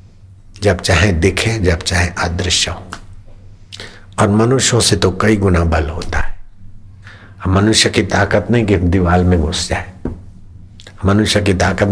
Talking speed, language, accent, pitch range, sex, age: 140 wpm, Hindi, native, 90-100 Hz, male, 60-79